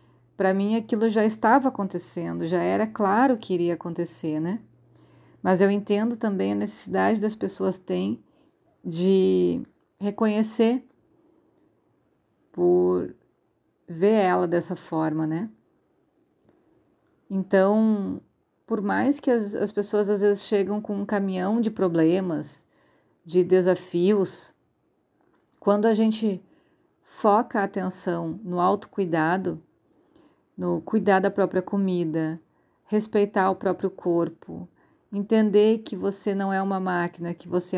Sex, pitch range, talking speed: female, 175-210 Hz, 115 wpm